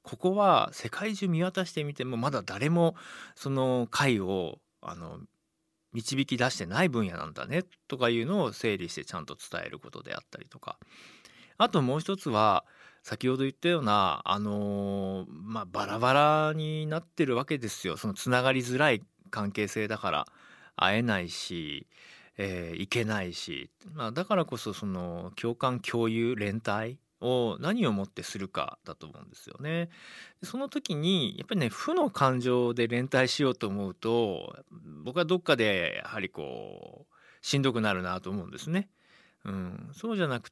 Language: Japanese